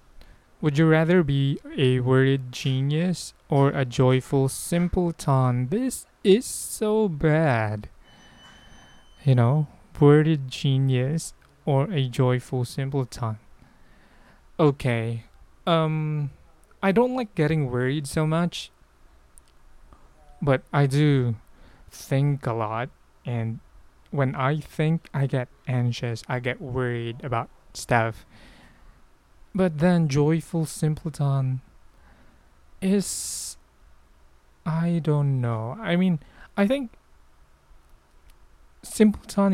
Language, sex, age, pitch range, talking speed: English, male, 20-39, 115-155 Hz, 95 wpm